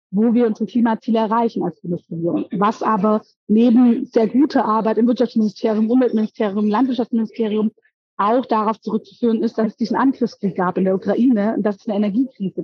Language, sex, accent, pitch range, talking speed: German, female, German, 200-235 Hz, 160 wpm